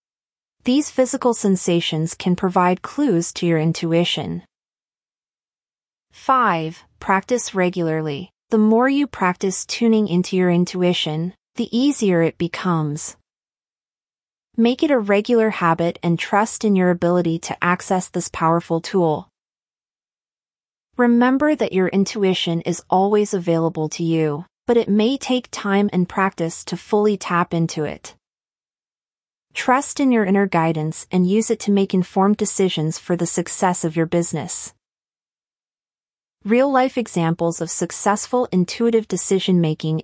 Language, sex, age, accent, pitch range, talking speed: English, female, 30-49, American, 165-210 Hz, 130 wpm